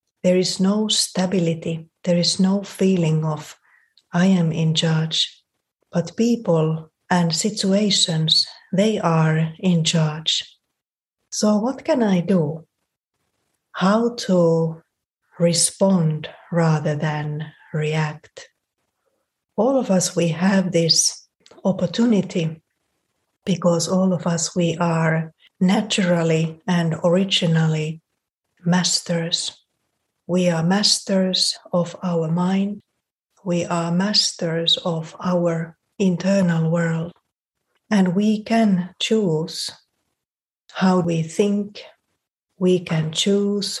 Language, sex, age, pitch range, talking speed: English, female, 30-49, 165-195 Hz, 100 wpm